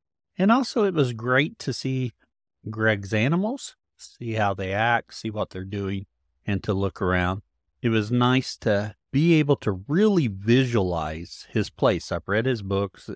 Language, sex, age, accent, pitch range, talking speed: English, male, 50-69, American, 100-145 Hz, 165 wpm